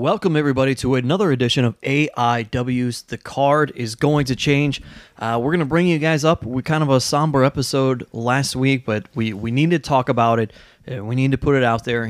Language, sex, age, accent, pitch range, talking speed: English, male, 20-39, American, 120-150 Hz, 220 wpm